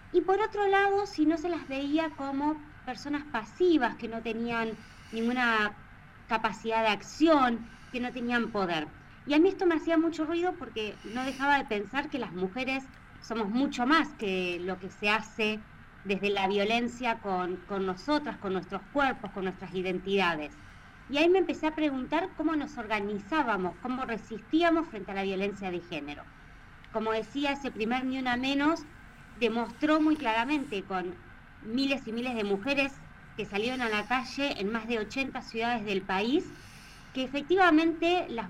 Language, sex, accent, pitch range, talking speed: Spanish, female, Argentinian, 215-295 Hz, 165 wpm